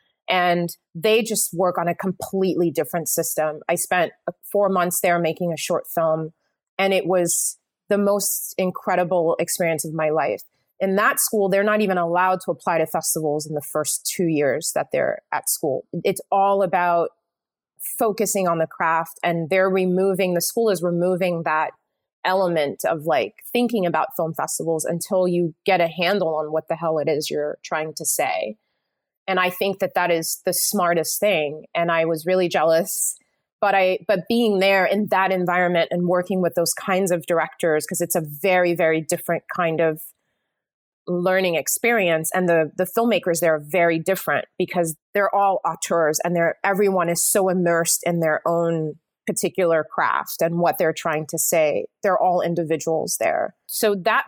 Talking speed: 175 wpm